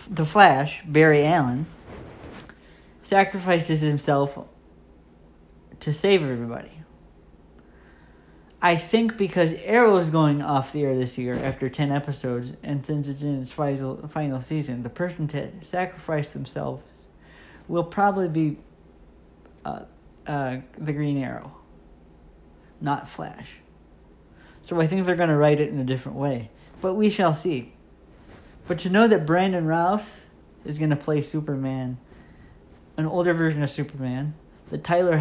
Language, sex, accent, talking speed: English, male, American, 135 wpm